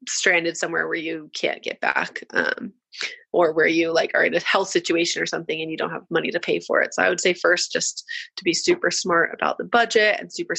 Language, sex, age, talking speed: English, female, 20-39, 245 wpm